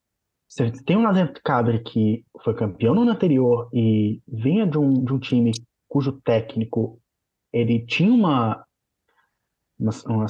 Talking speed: 145 wpm